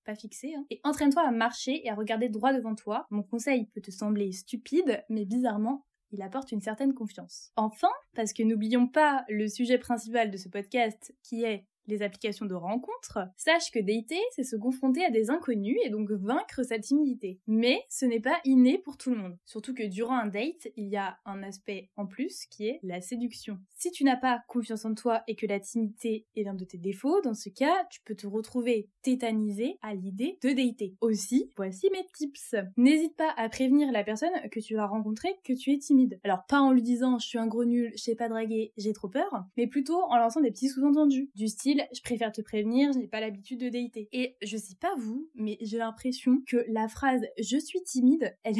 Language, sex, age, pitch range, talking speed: French, female, 10-29, 215-265 Hz, 220 wpm